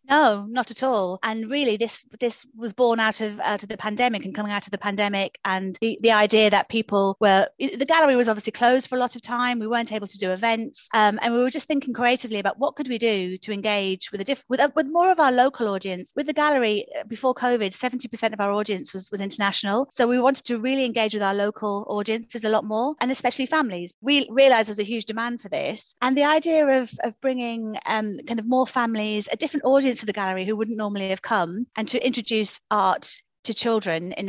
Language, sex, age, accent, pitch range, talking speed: English, female, 30-49, British, 200-245 Hz, 235 wpm